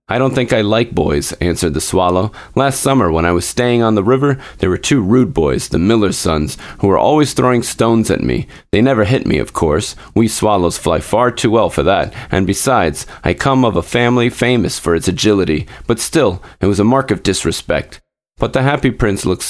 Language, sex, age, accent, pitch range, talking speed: English, male, 30-49, American, 90-120 Hz, 220 wpm